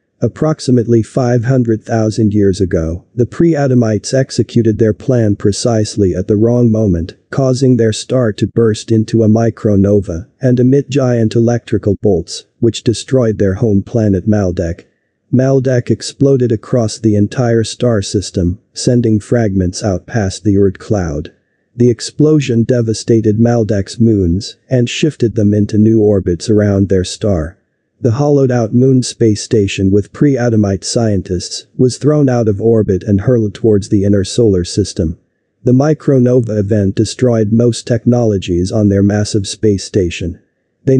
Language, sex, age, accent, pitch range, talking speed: English, male, 40-59, American, 100-125 Hz, 140 wpm